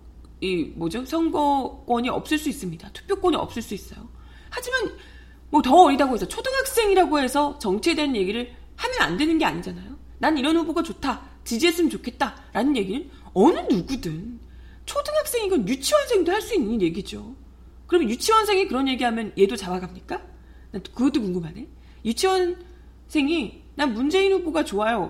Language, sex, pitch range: Korean, female, 185-300 Hz